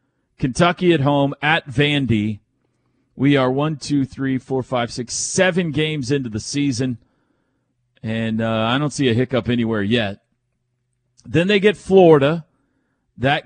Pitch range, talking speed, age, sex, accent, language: 115-145 Hz, 145 wpm, 40-59, male, American, English